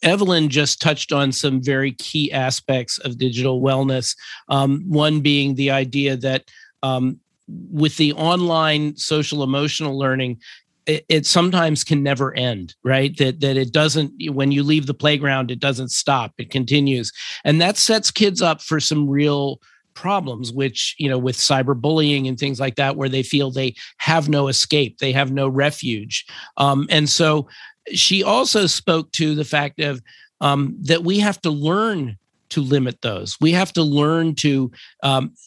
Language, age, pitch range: English, 50-69, 135-160 Hz